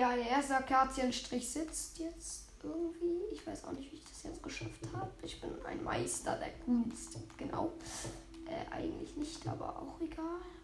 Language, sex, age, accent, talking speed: German, female, 10-29, German, 175 wpm